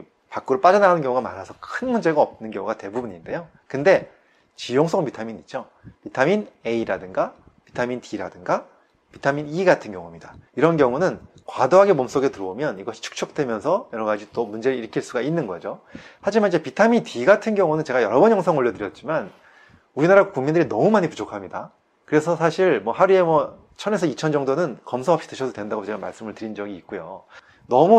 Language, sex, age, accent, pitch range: Korean, male, 30-49, native, 110-185 Hz